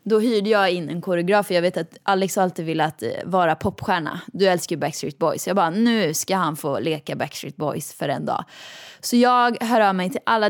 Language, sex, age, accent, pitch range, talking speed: Swedish, female, 20-39, native, 180-230 Hz, 225 wpm